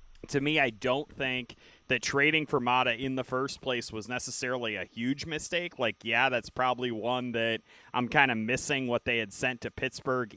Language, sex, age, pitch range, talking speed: English, male, 30-49, 115-135 Hz, 195 wpm